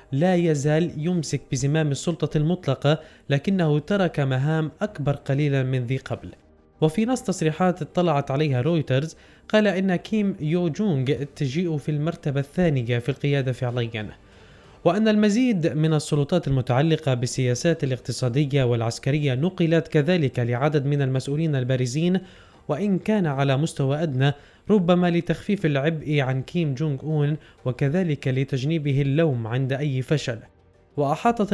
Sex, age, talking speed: male, 20-39, 125 wpm